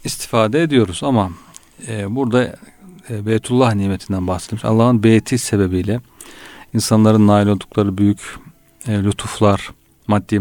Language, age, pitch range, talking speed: Turkish, 40-59, 100-120 Hz, 90 wpm